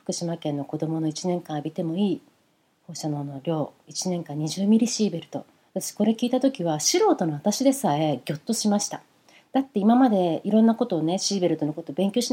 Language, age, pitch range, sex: Japanese, 40-59, 160-255 Hz, female